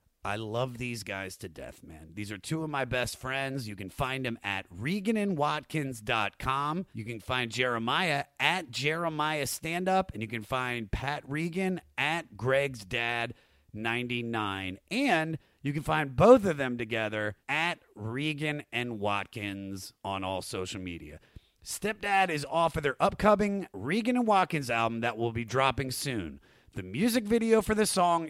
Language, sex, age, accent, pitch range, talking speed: English, male, 30-49, American, 115-175 Hz, 145 wpm